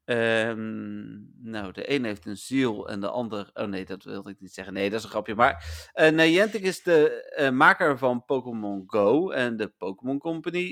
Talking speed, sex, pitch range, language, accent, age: 200 wpm, male, 105-140 Hz, Dutch, Dutch, 40-59